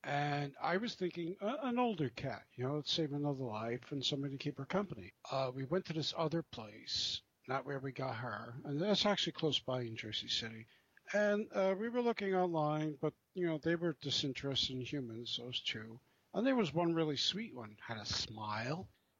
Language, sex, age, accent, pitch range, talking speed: English, male, 60-79, American, 125-165 Hz, 205 wpm